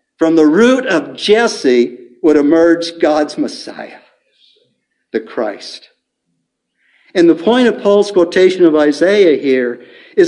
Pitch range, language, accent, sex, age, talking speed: 135-210 Hz, English, American, male, 60-79, 125 wpm